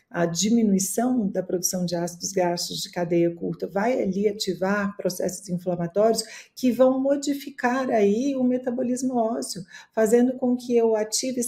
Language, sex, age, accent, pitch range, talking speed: Portuguese, female, 40-59, Brazilian, 195-245 Hz, 140 wpm